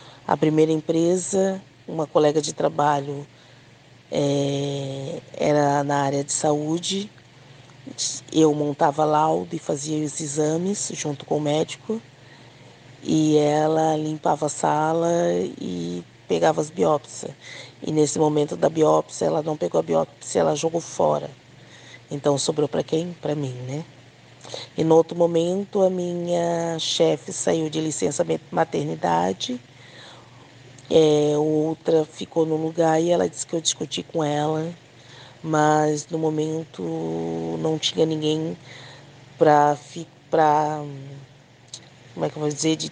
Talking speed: 125 wpm